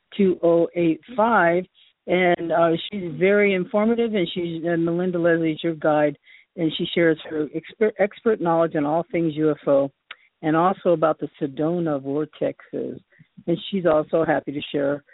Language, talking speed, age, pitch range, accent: English, 160 wpm, 50-69, 160-195 Hz, American